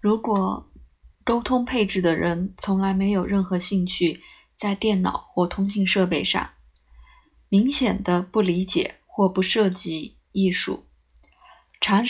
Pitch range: 175-215 Hz